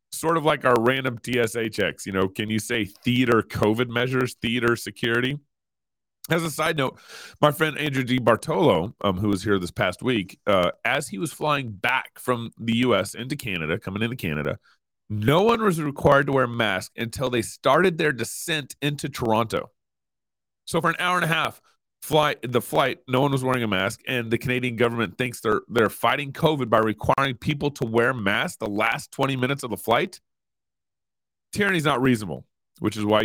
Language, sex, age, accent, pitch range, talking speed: English, male, 30-49, American, 105-135 Hz, 195 wpm